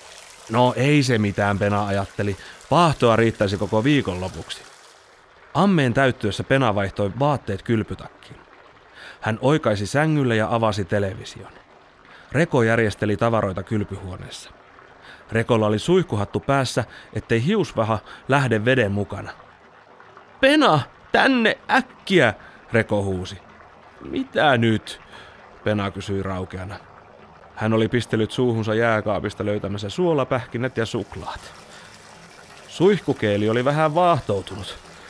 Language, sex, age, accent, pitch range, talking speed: Finnish, male, 30-49, native, 105-145 Hz, 100 wpm